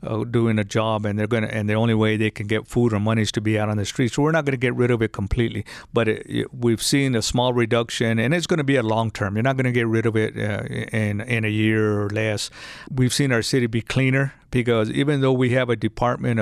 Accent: American